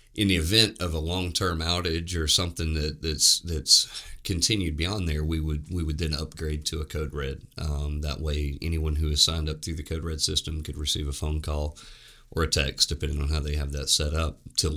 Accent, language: American, English